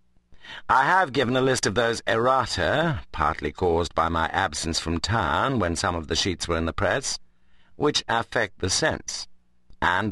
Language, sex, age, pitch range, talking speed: English, male, 50-69, 85-115 Hz, 170 wpm